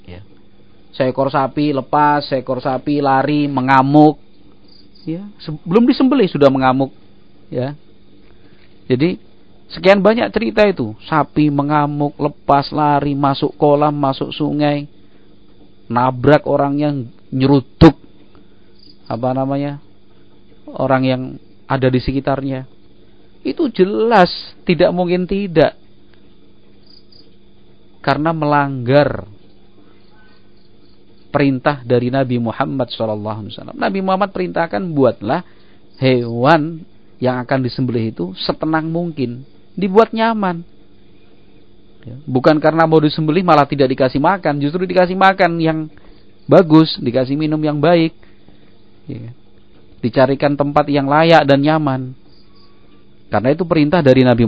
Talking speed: 100 wpm